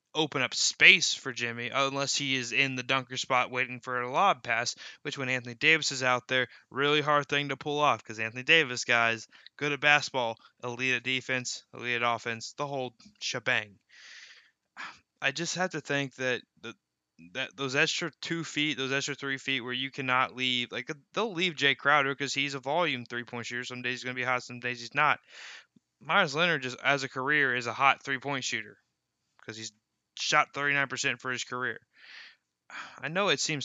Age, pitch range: 20-39, 125-150 Hz